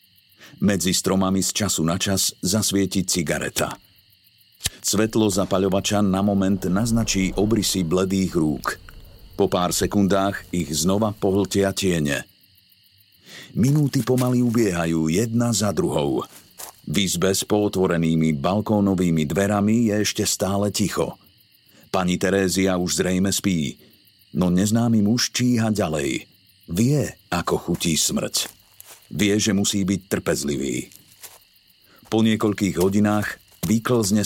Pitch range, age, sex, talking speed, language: 90-105 Hz, 50-69, male, 110 wpm, Slovak